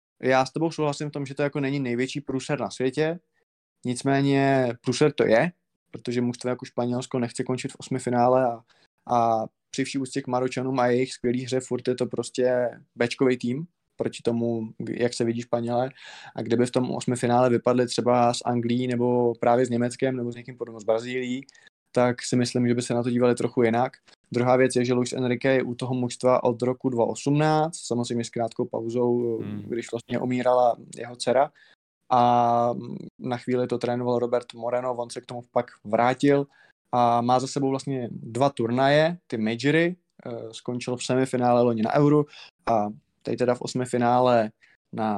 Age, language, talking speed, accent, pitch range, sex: 20-39, Czech, 185 wpm, native, 120-130 Hz, male